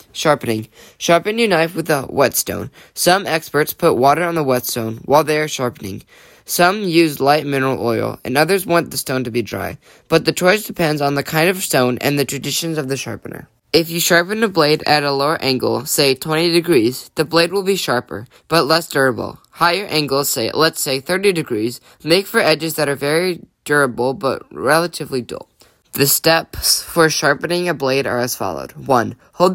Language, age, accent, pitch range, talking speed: English, 10-29, American, 130-165 Hz, 190 wpm